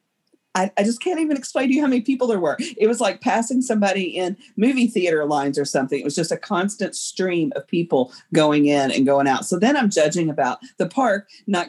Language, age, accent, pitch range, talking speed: English, 40-59, American, 140-190 Hz, 230 wpm